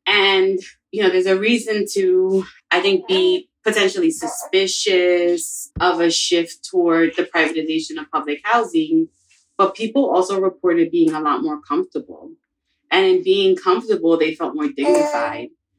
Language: English